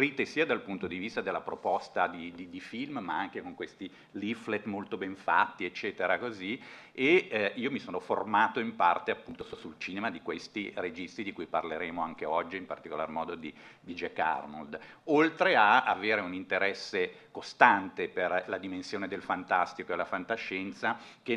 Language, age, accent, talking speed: Italian, 50-69, native, 175 wpm